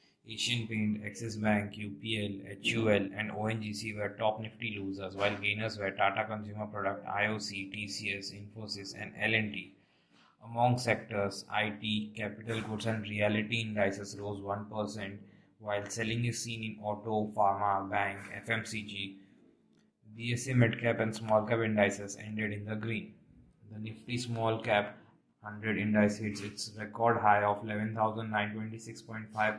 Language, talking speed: English, 130 wpm